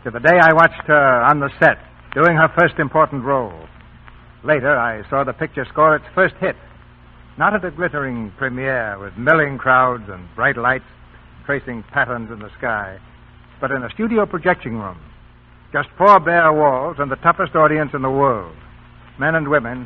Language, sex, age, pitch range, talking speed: English, male, 60-79, 105-155 Hz, 180 wpm